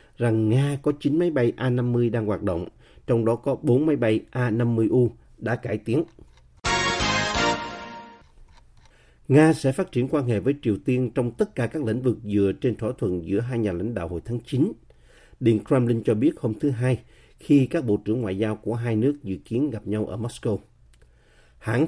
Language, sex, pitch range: Vietnamese, male, 110-135 Hz